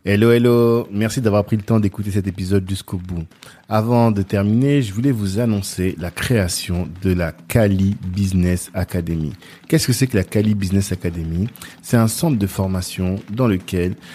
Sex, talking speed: male, 175 wpm